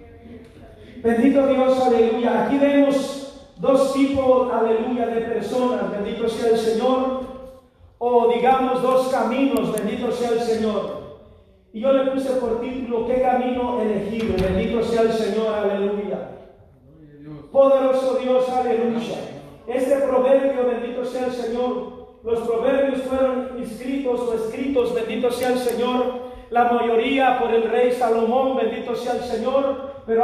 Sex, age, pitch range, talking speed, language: male, 40-59, 225-255 Hz, 130 wpm, Spanish